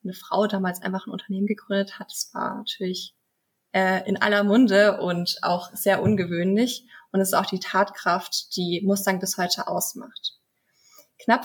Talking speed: 160 wpm